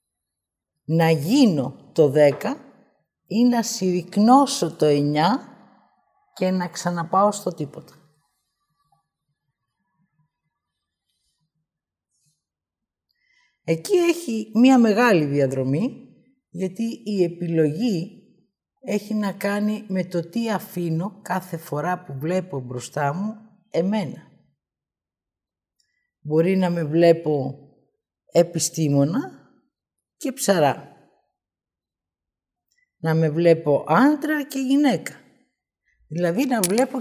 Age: 50-69